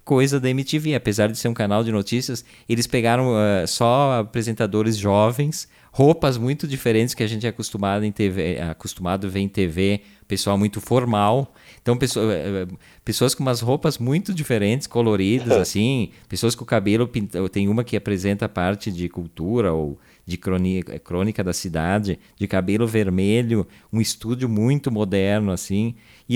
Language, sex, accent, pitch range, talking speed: Portuguese, male, Brazilian, 100-120 Hz, 155 wpm